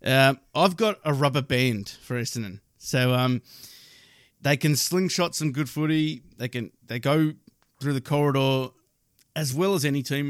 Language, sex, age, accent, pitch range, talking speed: English, male, 30-49, Australian, 120-145 Hz, 165 wpm